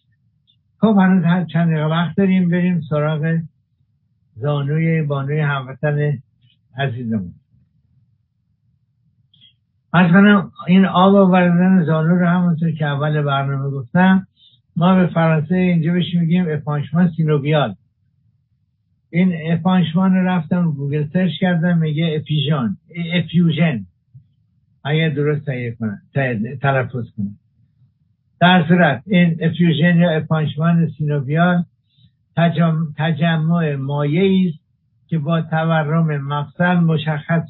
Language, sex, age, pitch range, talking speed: English, male, 60-79, 130-170 Hz, 95 wpm